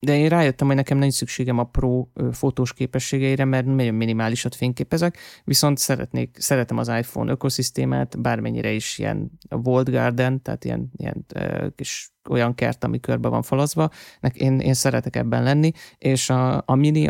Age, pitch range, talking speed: 30-49, 115-135 Hz, 160 wpm